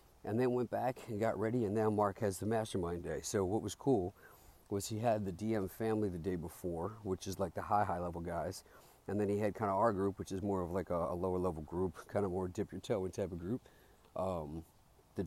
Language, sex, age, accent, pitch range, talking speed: English, male, 50-69, American, 95-110 Hz, 255 wpm